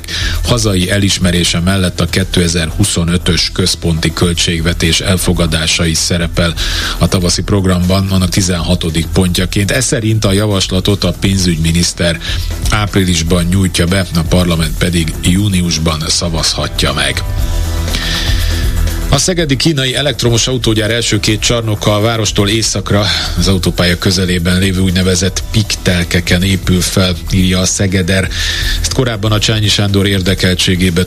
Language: Hungarian